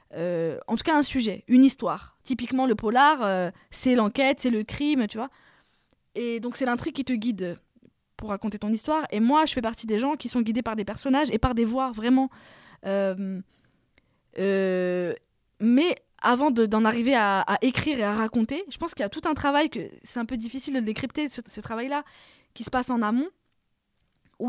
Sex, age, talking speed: female, 20-39, 210 wpm